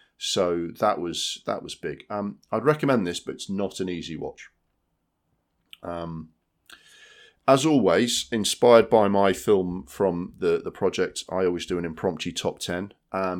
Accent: British